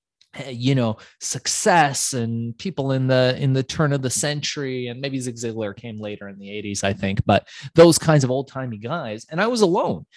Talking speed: 200 wpm